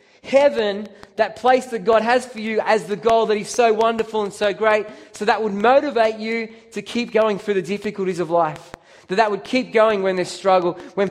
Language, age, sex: English, 20-39, male